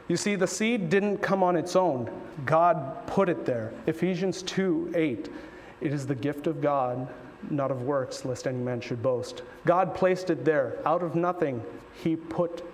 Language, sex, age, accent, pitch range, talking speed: English, male, 40-59, American, 135-170 Hz, 185 wpm